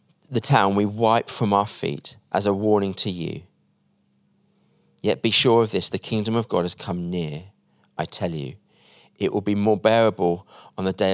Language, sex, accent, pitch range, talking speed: English, male, British, 100-135 Hz, 190 wpm